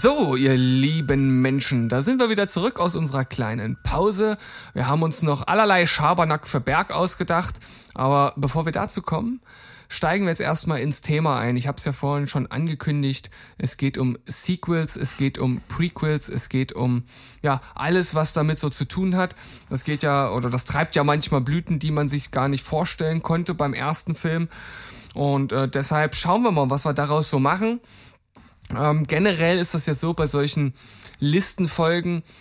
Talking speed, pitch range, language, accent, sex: 180 wpm, 130-165 Hz, German, German, male